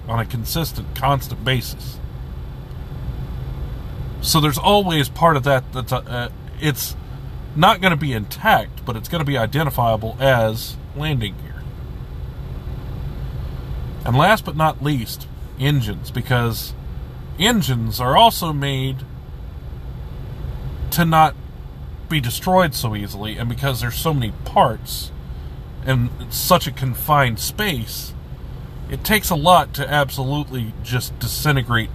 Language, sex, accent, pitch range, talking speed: English, male, American, 110-145 Hz, 120 wpm